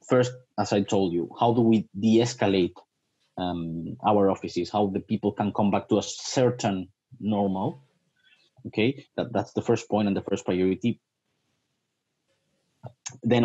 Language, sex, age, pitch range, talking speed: English, male, 30-49, 100-120 Hz, 140 wpm